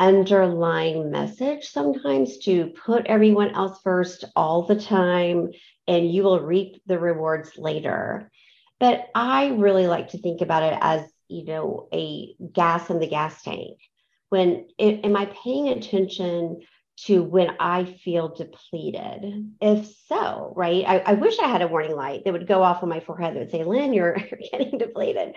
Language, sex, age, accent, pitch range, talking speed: English, female, 50-69, American, 170-210 Hz, 165 wpm